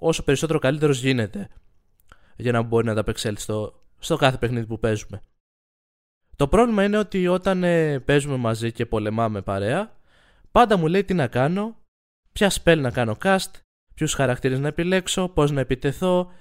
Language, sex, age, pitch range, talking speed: Greek, male, 20-39, 115-175 Hz, 165 wpm